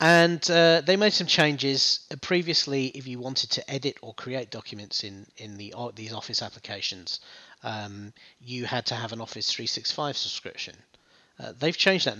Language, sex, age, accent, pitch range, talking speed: English, male, 30-49, British, 110-140 Hz, 170 wpm